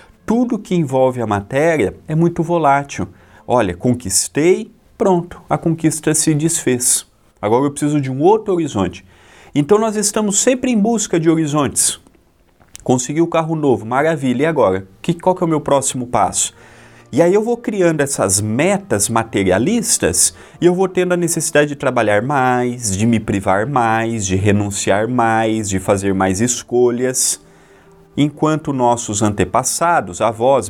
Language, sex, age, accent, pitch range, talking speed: Portuguese, male, 30-49, Brazilian, 110-160 Hz, 145 wpm